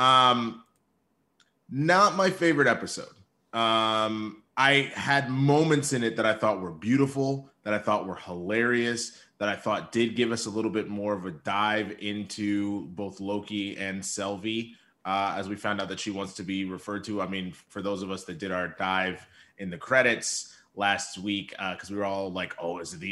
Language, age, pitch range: English, 20-39, 100-130 Hz